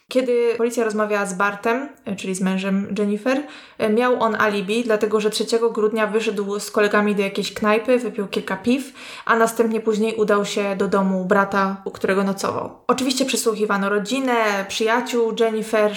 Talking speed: 155 wpm